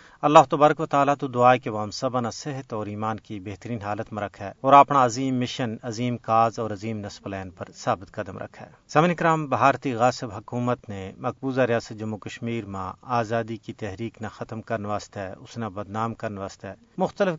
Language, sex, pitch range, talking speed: Urdu, male, 110-140 Hz, 195 wpm